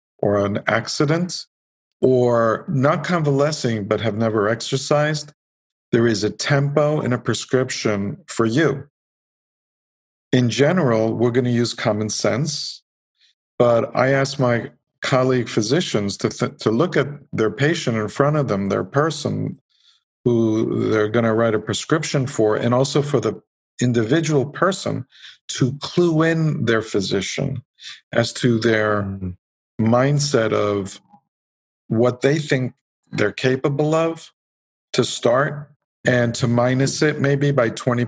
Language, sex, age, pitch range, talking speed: English, male, 50-69, 110-140 Hz, 135 wpm